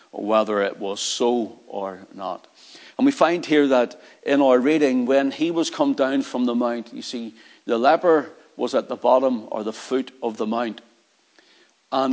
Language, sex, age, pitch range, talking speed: English, male, 60-79, 120-140 Hz, 185 wpm